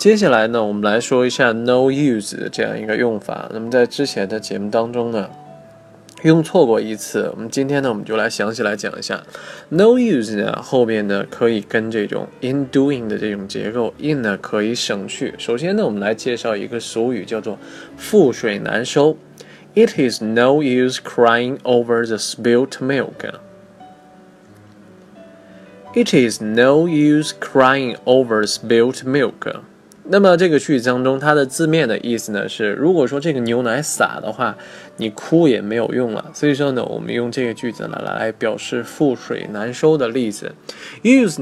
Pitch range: 110-145 Hz